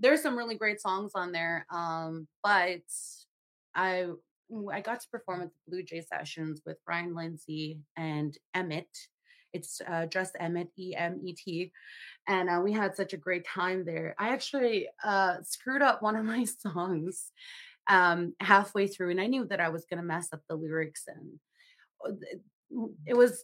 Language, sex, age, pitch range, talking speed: English, female, 30-49, 170-215 Hz, 175 wpm